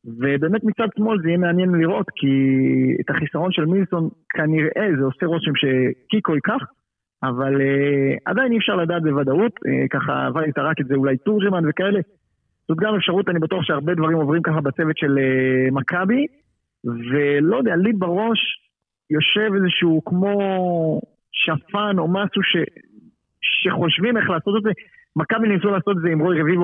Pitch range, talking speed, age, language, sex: 140-190 Hz, 155 wpm, 30-49, Hebrew, male